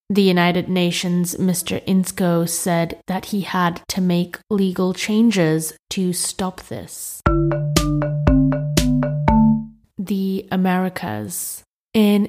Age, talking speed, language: 20-39, 95 wpm, English